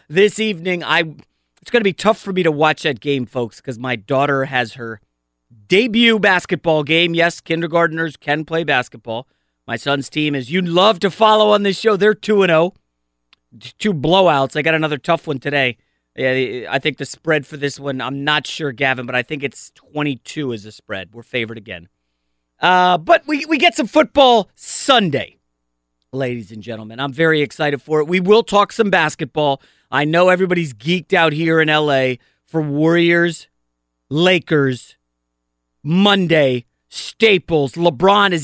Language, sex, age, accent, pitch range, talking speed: English, male, 30-49, American, 130-180 Hz, 175 wpm